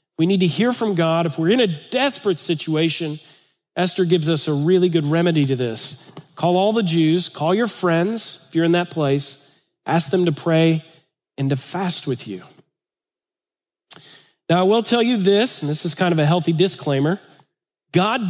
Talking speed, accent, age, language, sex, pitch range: 185 wpm, American, 40-59, English, male, 155-200 Hz